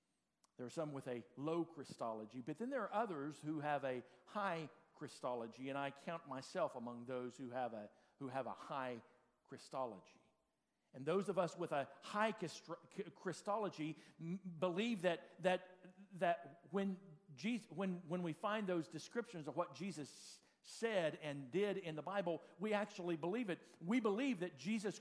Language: English